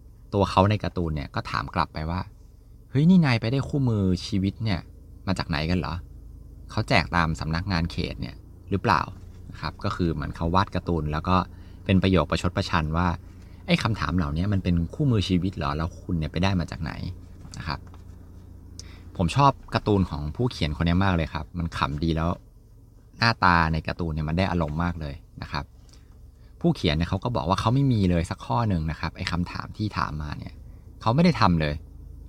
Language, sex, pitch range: Thai, male, 85-105 Hz